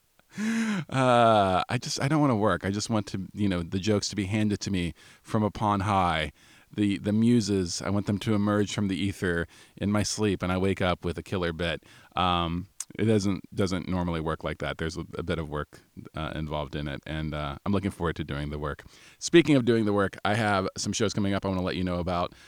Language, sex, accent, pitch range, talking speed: English, male, American, 85-105 Hz, 240 wpm